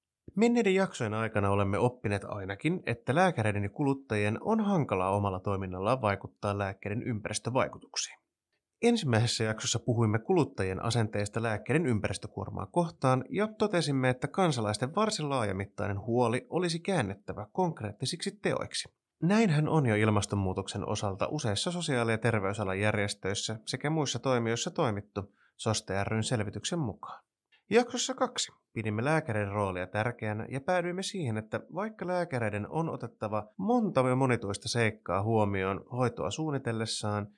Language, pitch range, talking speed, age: Finnish, 105-155 Hz, 115 wpm, 20-39